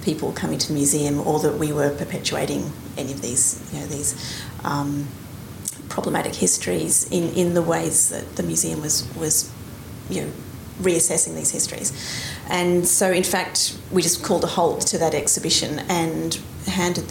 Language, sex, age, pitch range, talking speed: English, female, 30-49, 150-175 Hz, 165 wpm